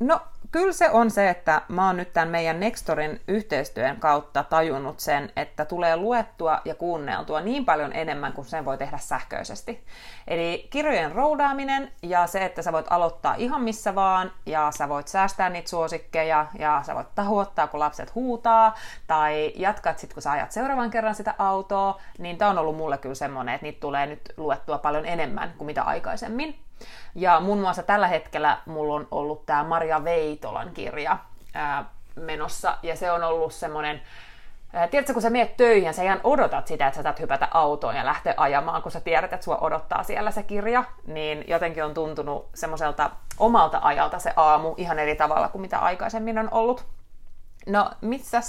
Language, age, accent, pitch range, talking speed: Finnish, 30-49, native, 155-220 Hz, 180 wpm